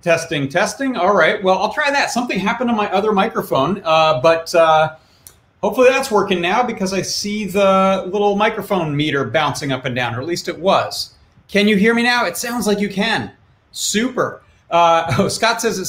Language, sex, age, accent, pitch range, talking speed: English, male, 30-49, American, 160-220 Hz, 200 wpm